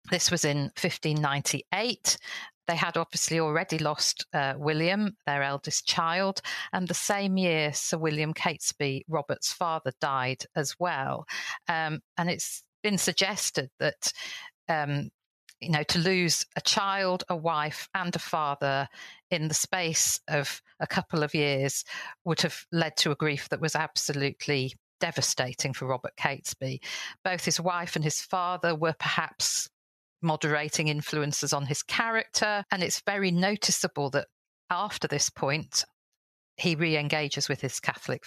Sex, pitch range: female, 145-180 Hz